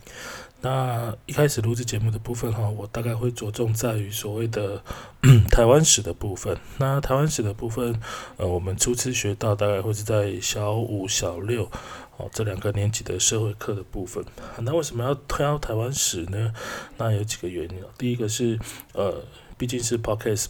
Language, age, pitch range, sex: Chinese, 20-39, 105-120 Hz, male